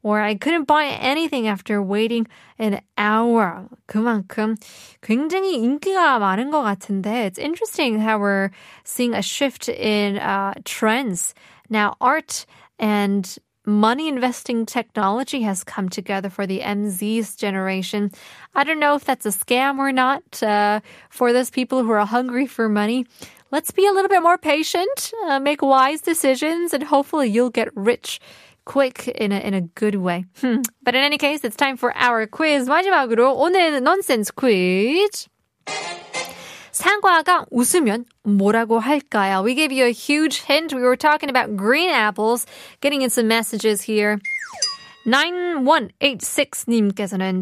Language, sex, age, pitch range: Korean, female, 20-39, 210-300 Hz